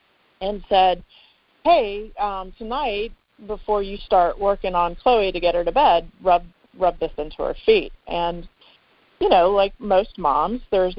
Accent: American